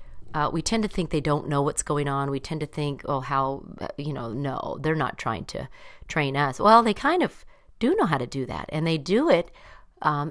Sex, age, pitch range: female, 40-59, 140-185 Hz